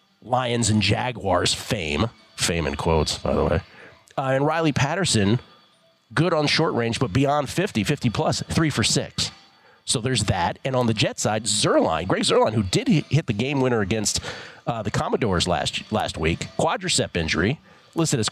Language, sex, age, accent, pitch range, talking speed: English, male, 40-59, American, 105-140 Hz, 175 wpm